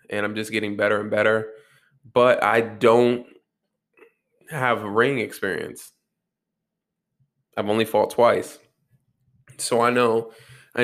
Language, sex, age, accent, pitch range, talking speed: English, male, 20-39, American, 110-130 Hz, 115 wpm